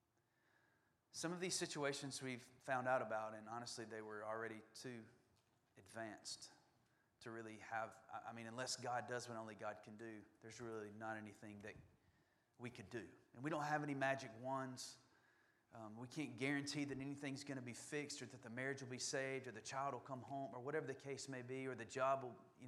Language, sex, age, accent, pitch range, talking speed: English, male, 30-49, American, 115-140 Hz, 200 wpm